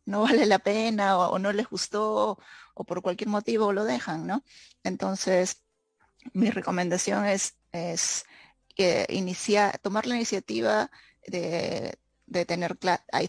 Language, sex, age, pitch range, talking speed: English, female, 30-49, 170-205 Hz, 130 wpm